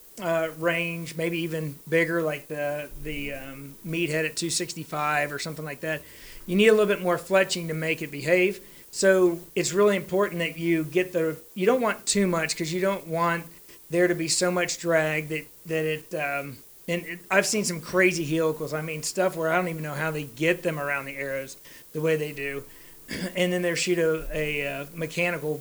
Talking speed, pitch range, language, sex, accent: 210 wpm, 155-180 Hz, English, male, American